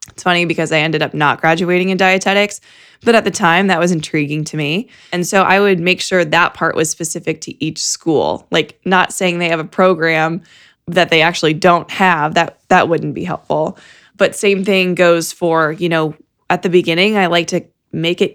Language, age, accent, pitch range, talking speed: English, 20-39, American, 165-195 Hz, 205 wpm